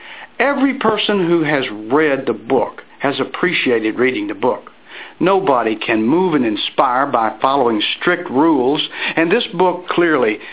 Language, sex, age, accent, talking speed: English, male, 60-79, American, 140 wpm